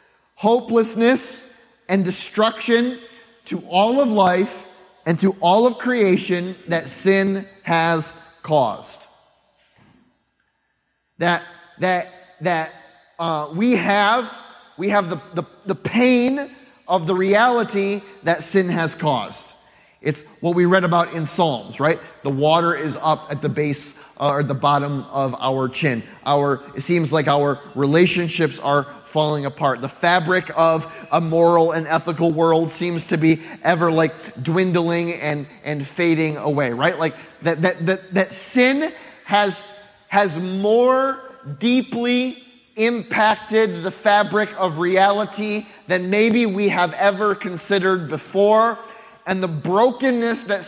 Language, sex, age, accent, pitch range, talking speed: English, male, 30-49, American, 165-210 Hz, 130 wpm